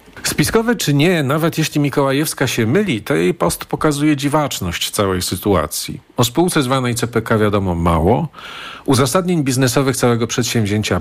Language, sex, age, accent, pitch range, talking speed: Polish, male, 40-59, native, 110-150 Hz, 135 wpm